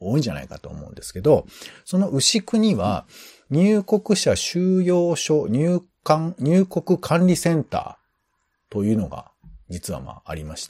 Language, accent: Japanese, native